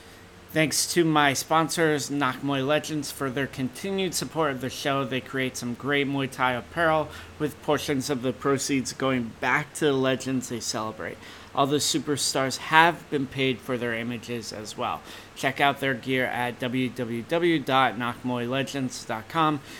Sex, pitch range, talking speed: male, 120-145 Hz, 150 wpm